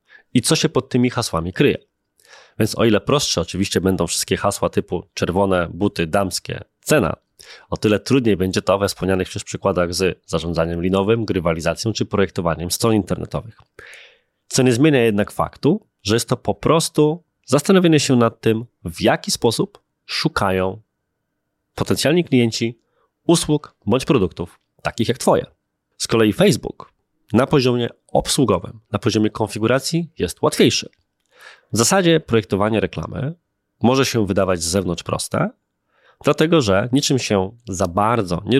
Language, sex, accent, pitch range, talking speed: Polish, male, native, 95-135 Hz, 140 wpm